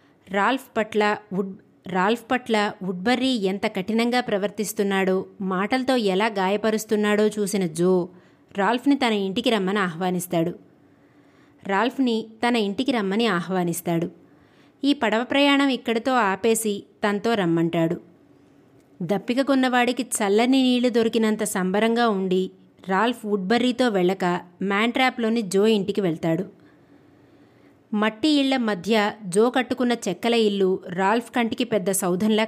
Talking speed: 100 wpm